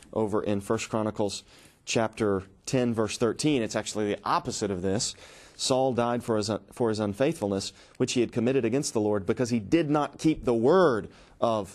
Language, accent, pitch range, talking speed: English, American, 105-125 Hz, 185 wpm